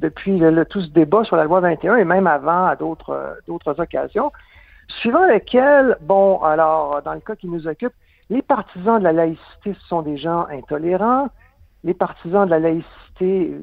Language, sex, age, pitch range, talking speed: French, male, 60-79, 165-230 Hz, 170 wpm